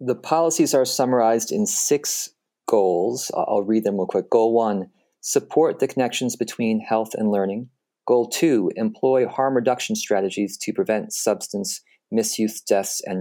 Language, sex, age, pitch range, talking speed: English, male, 40-59, 100-120 Hz, 150 wpm